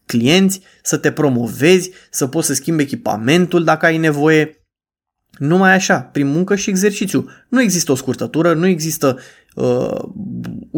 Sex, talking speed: male, 140 wpm